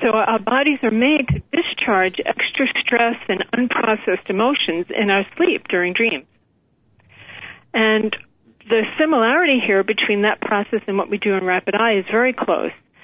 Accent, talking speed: American, 155 wpm